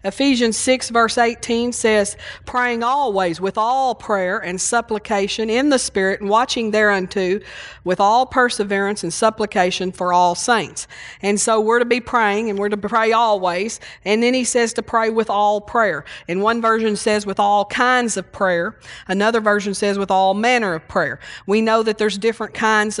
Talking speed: 180 wpm